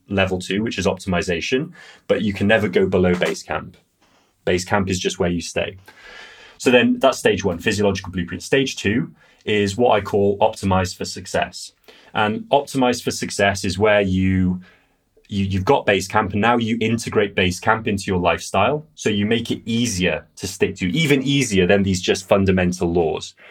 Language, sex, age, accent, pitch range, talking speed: English, male, 30-49, British, 90-105 Hz, 185 wpm